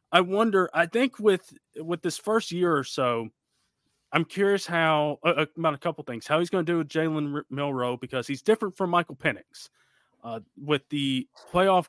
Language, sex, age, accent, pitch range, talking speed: English, male, 20-39, American, 130-175 Hz, 185 wpm